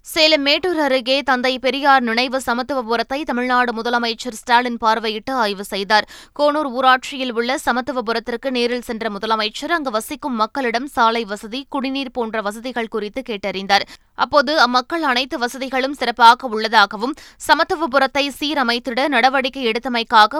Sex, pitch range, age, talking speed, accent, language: female, 230-275 Hz, 20-39, 120 wpm, native, Tamil